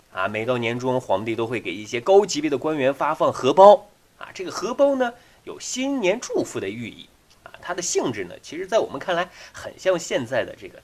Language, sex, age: Chinese, male, 30-49